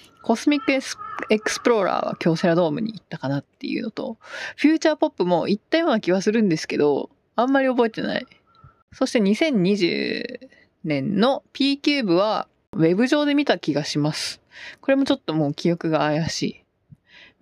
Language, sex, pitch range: Japanese, female, 170-265 Hz